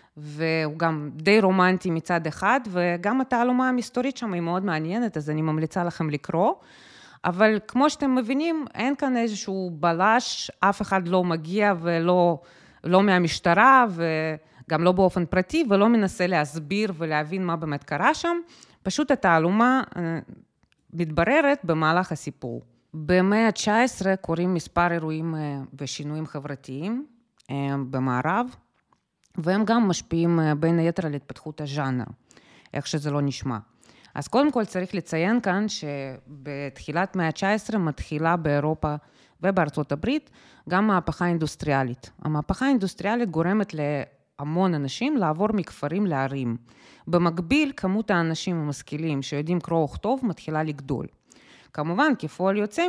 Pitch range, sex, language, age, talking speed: 155-210 Hz, female, Hebrew, 30-49, 120 wpm